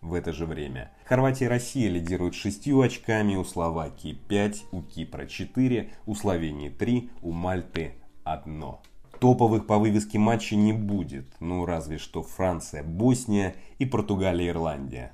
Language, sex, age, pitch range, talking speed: Russian, male, 30-49, 80-105 Hz, 140 wpm